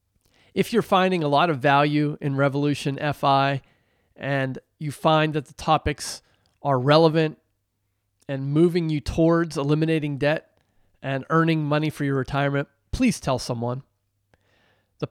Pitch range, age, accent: 115-165 Hz, 30-49, American